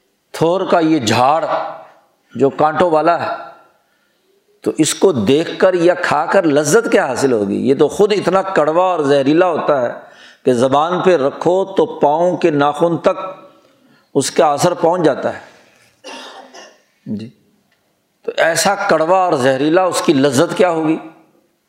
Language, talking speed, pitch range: Urdu, 145 wpm, 150-200 Hz